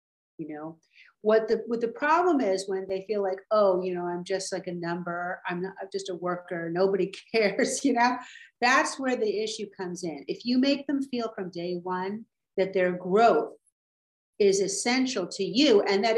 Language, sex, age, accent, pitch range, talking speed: English, female, 50-69, American, 185-235 Hz, 195 wpm